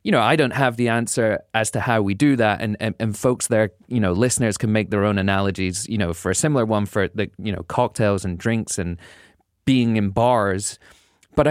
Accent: British